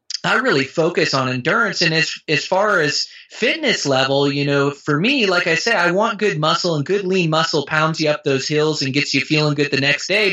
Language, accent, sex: English, American, male